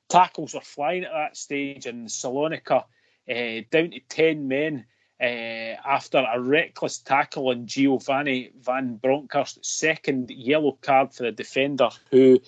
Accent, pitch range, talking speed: British, 125-145 Hz, 140 wpm